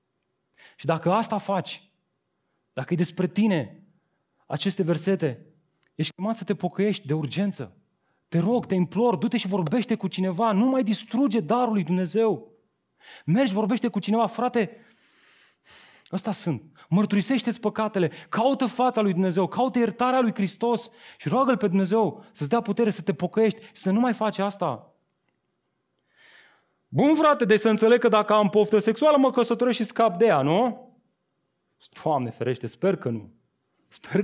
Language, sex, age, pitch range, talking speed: Romanian, male, 30-49, 145-215 Hz, 155 wpm